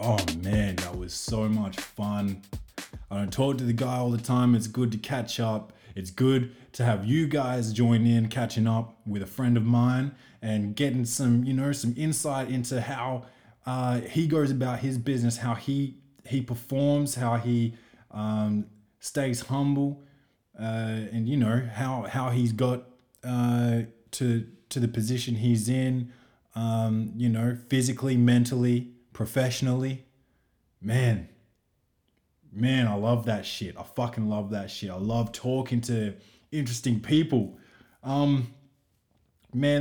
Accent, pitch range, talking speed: Australian, 110-130 Hz, 150 wpm